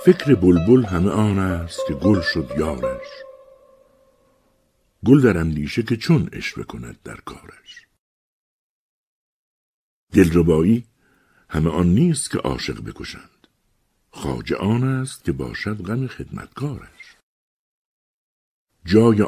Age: 60-79